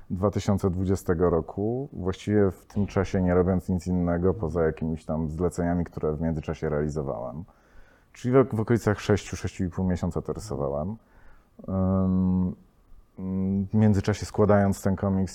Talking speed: 115 wpm